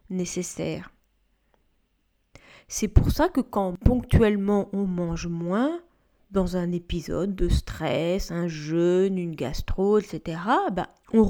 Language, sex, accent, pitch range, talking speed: French, female, French, 180-245 Hz, 115 wpm